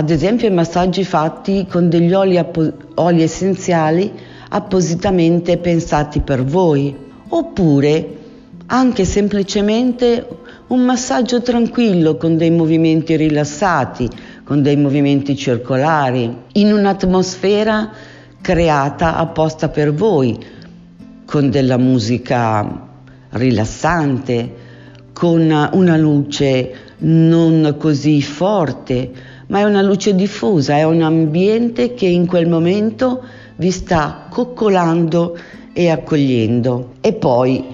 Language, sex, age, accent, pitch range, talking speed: Italian, female, 50-69, native, 140-185 Hz, 100 wpm